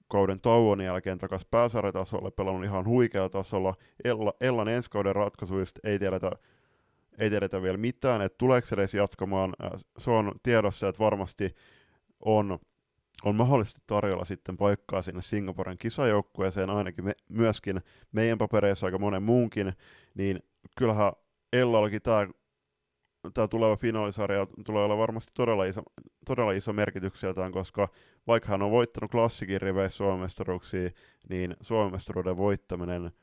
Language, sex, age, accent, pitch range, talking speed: Finnish, male, 30-49, native, 95-110 Hz, 130 wpm